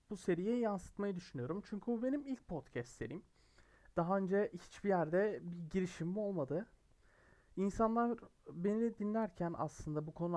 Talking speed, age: 135 wpm, 30-49